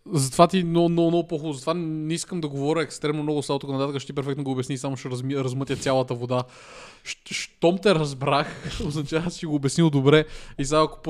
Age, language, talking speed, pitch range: 20-39, Bulgarian, 200 wpm, 125-150 Hz